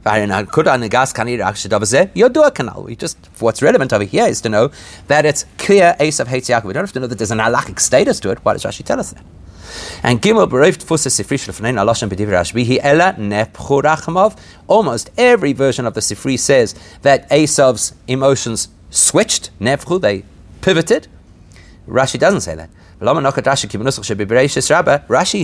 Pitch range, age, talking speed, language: 105-150 Hz, 40-59, 120 wpm, English